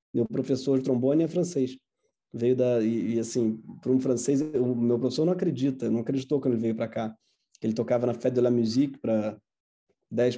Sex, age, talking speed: male, 20-39, 200 wpm